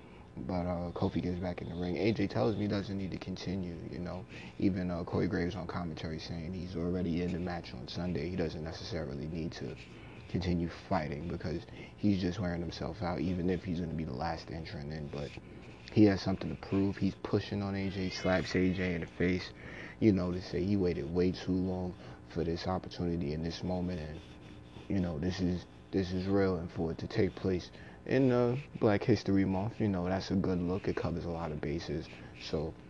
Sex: male